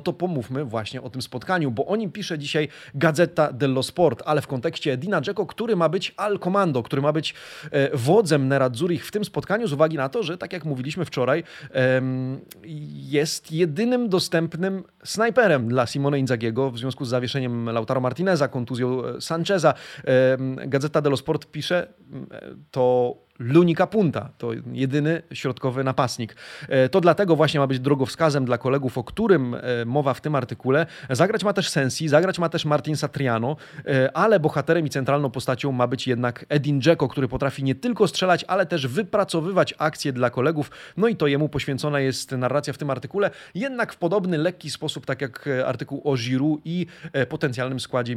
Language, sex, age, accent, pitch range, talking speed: Polish, male, 30-49, native, 130-170 Hz, 170 wpm